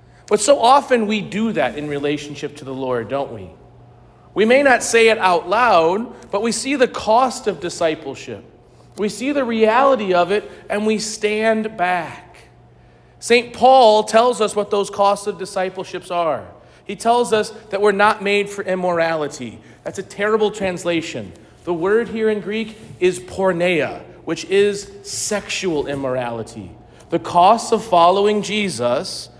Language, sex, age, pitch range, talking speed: English, male, 40-59, 165-225 Hz, 155 wpm